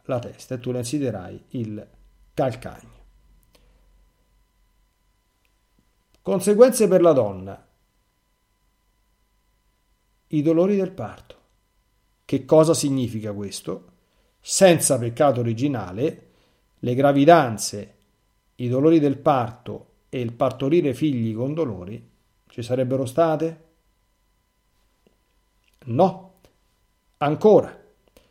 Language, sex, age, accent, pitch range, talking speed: Italian, male, 50-69, native, 110-160 Hz, 85 wpm